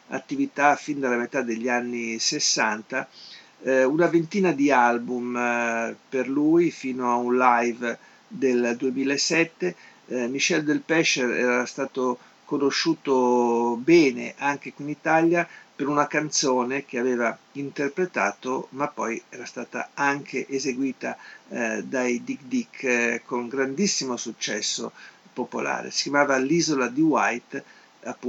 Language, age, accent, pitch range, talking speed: Italian, 50-69, native, 125-165 Hz, 125 wpm